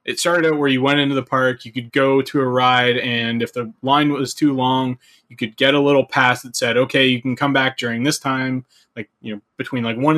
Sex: male